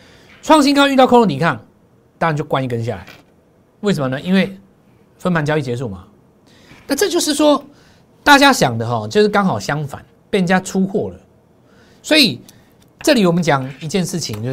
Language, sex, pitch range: Chinese, male, 130-195 Hz